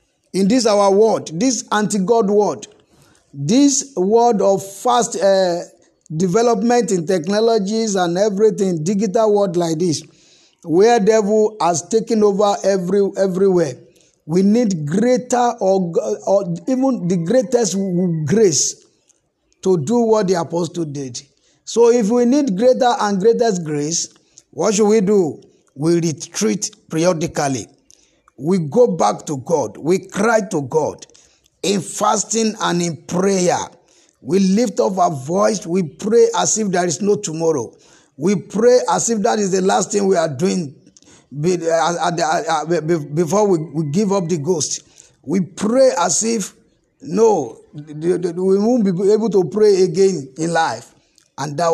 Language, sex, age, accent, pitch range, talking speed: English, male, 50-69, Nigerian, 170-220 Hz, 135 wpm